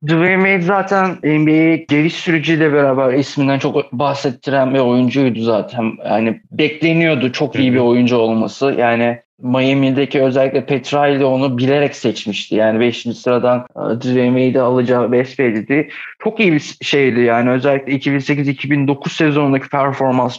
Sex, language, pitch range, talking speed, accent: male, Turkish, 130-155 Hz, 130 wpm, native